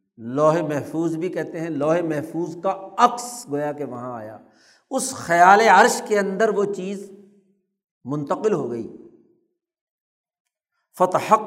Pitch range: 135-170 Hz